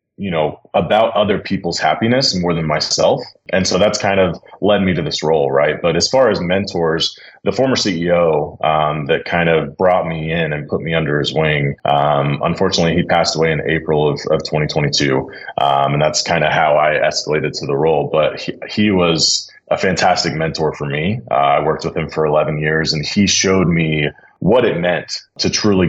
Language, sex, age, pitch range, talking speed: English, male, 30-49, 75-95 Hz, 205 wpm